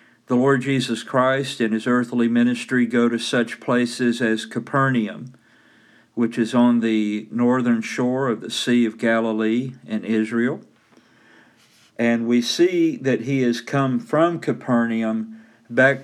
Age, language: 50-69, English